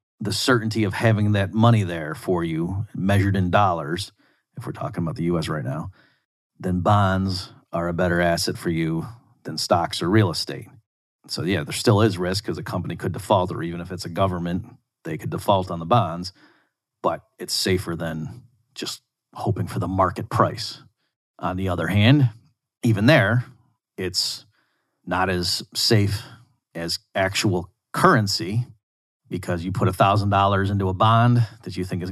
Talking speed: 170 wpm